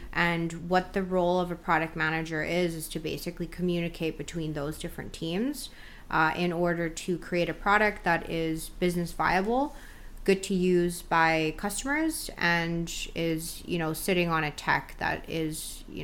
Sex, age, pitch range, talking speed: female, 20-39, 160-185 Hz, 165 wpm